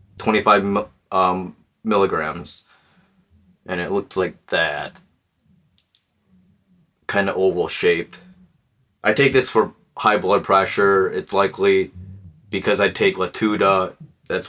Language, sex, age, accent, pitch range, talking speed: English, male, 20-39, American, 100-115 Hz, 110 wpm